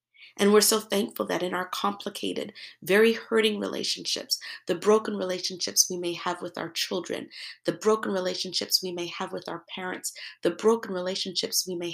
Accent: American